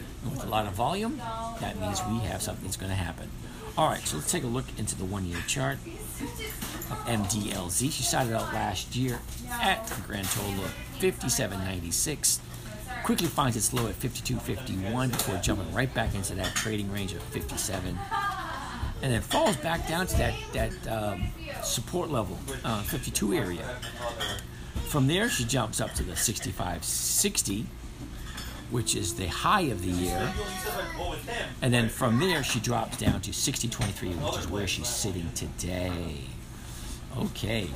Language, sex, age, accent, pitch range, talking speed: English, male, 50-69, American, 95-120 Hz, 160 wpm